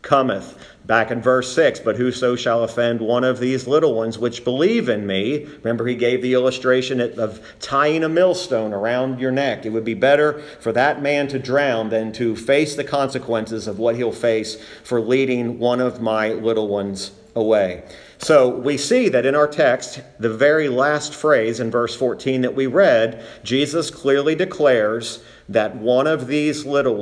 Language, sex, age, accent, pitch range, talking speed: English, male, 40-59, American, 115-140 Hz, 180 wpm